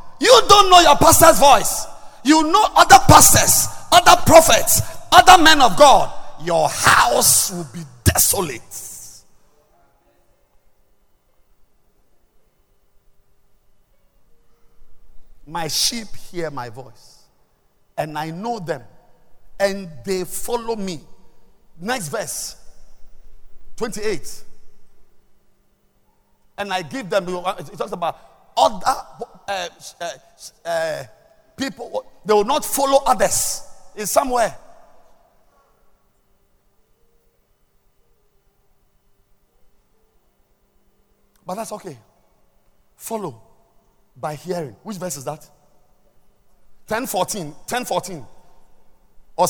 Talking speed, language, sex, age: 85 wpm, English, male, 50-69